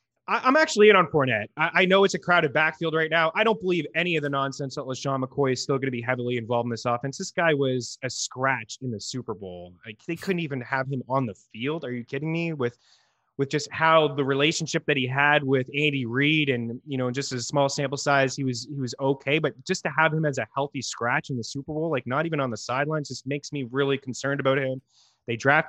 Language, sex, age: English, male, 20-39